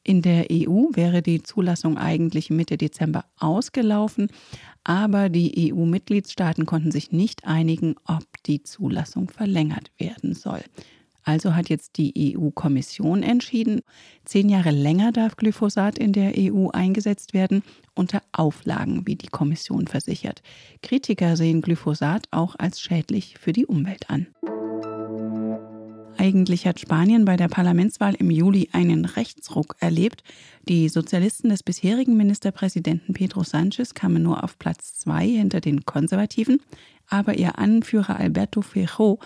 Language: German